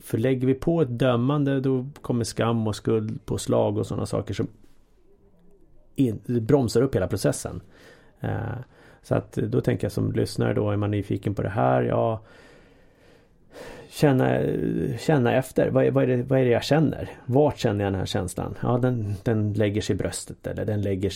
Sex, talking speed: male, 185 wpm